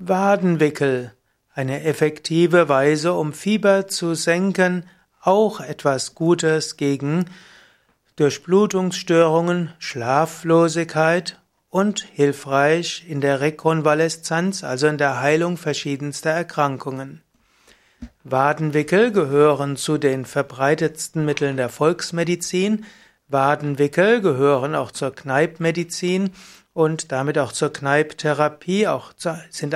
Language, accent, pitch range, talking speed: German, German, 140-170 Hz, 95 wpm